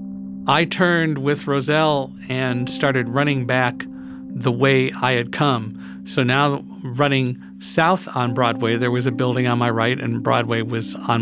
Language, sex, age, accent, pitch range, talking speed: English, male, 50-69, American, 115-150 Hz, 160 wpm